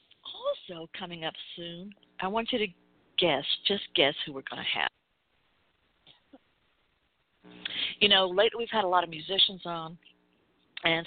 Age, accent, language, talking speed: 60-79, American, English, 145 wpm